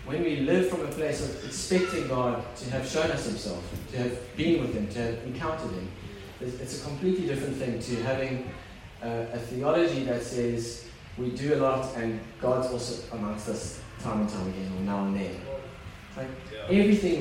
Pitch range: 115-140 Hz